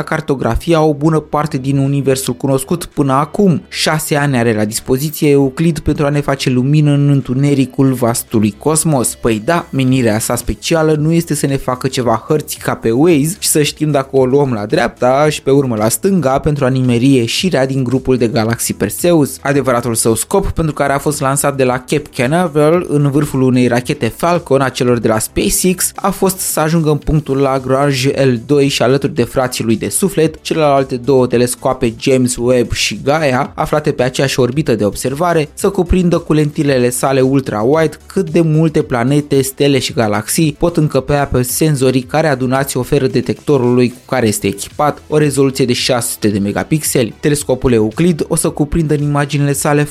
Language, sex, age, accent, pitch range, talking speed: Romanian, male, 20-39, native, 125-155 Hz, 180 wpm